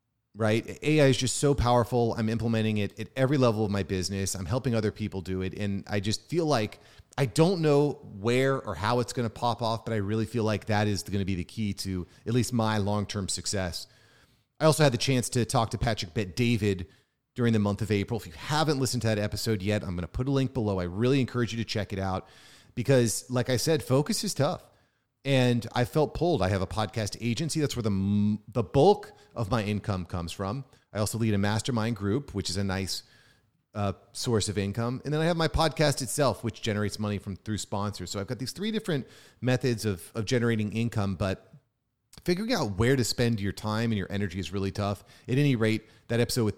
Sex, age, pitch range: male, 30-49, 100-125 Hz